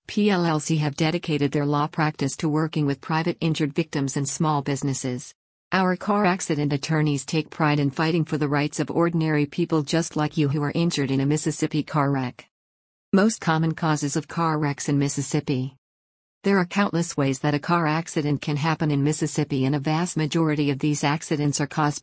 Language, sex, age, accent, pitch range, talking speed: English, female, 50-69, American, 130-165 Hz, 190 wpm